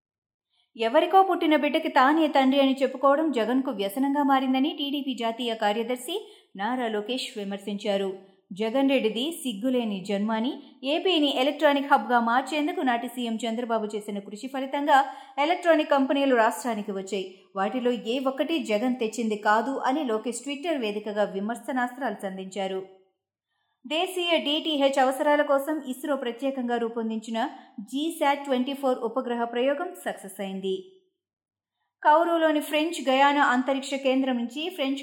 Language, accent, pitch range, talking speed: Telugu, native, 225-285 Hz, 115 wpm